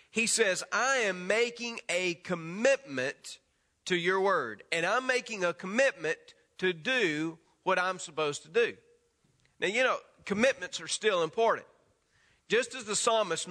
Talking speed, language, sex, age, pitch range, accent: 145 wpm, English, male, 40-59, 170-230 Hz, American